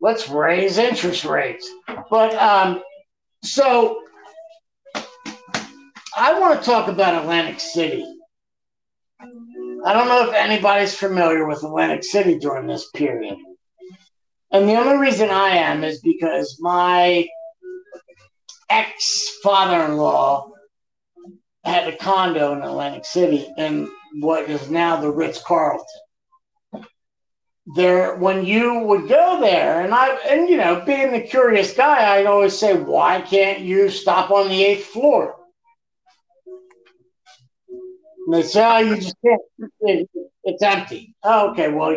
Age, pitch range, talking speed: 50-69, 180-280 Hz, 120 wpm